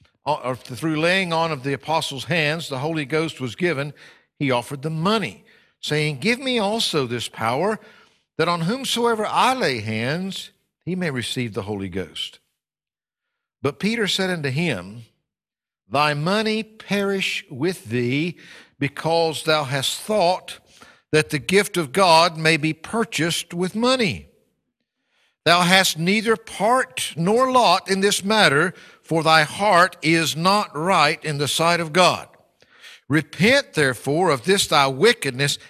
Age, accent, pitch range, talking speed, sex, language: 60-79, American, 145-195 Hz, 140 wpm, male, English